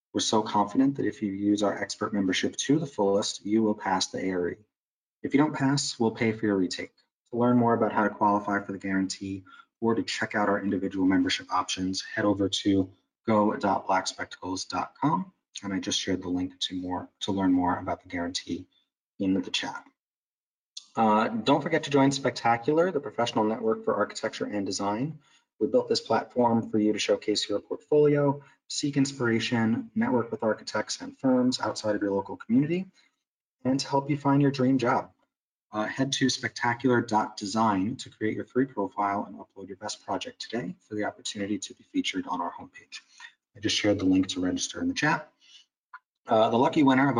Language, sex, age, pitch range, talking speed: English, male, 30-49, 100-135 Hz, 190 wpm